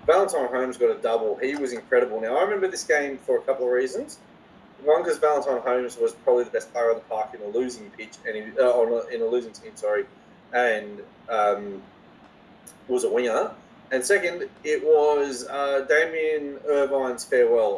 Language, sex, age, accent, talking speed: English, male, 20-39, Australian, 185 wpm